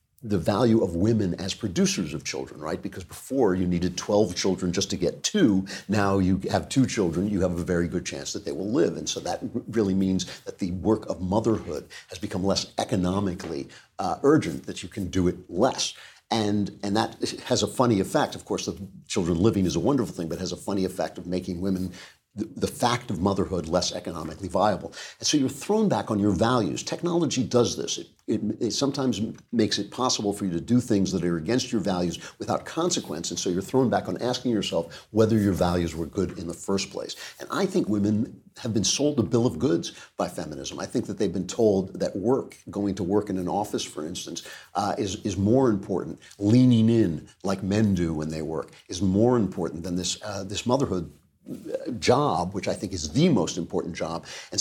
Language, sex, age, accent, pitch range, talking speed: English, male, 50-69, American, 90-115 Hz, 215 wpm